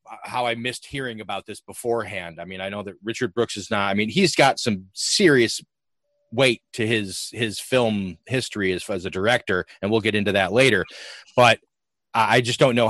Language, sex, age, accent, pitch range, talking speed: English, male, 30-49, American, 105-140 Hz, 200 wpm